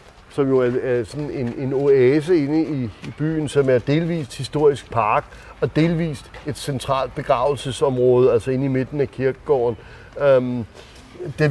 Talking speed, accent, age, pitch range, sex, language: 150 wpm, native, 60-79, 130-170 Hz, male, Danish